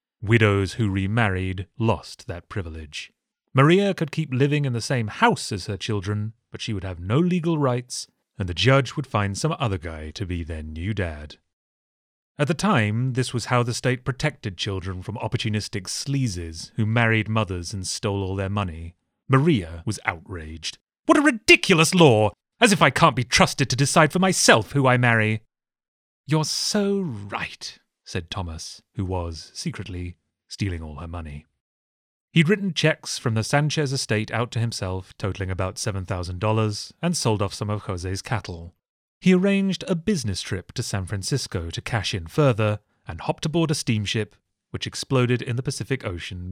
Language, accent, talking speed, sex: English, British, 170 wpm, male